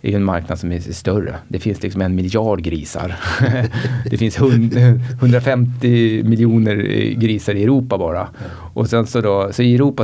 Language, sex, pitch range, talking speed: Swedish, male, 100-130 Hz, 165 wpm